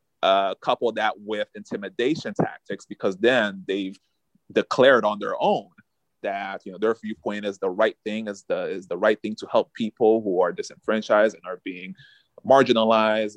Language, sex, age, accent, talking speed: English, male, 30-49, American, 170 wpm